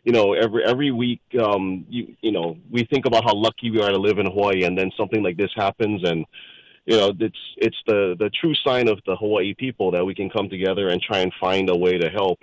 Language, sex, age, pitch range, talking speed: English, male, 30-49, 100-120 Hz, 250 wpm